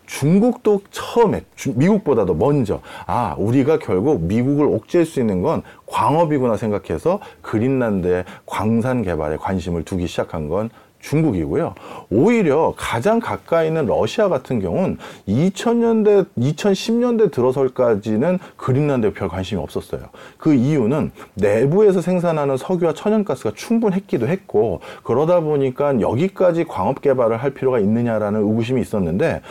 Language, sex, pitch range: Korean, male, 120-190 Hz